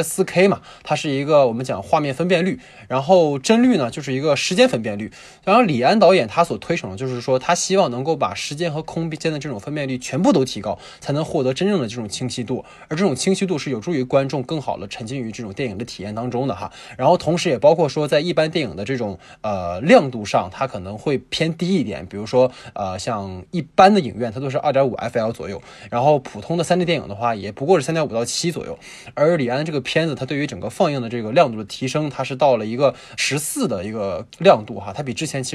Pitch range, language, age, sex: 120-165 Hz, Chinese, 20-39, male